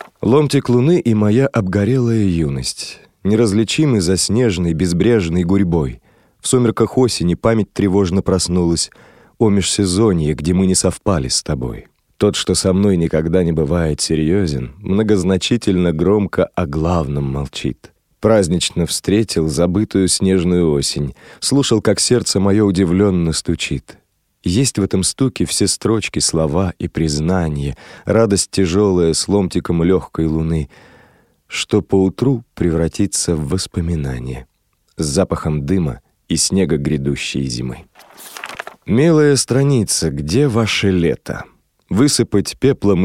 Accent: native